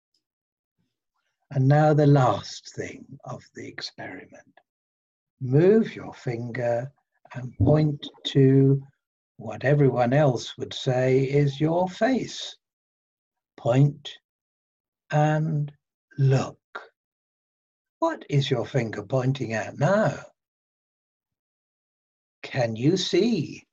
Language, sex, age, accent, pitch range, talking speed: English, male, 60-79, British, 125-165 Hz, 90 wpm